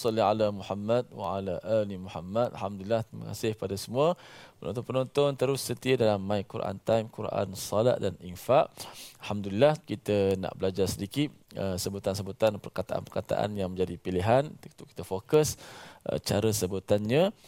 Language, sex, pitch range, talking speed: Malayalam, male, 95-120 Hz, 135 wpm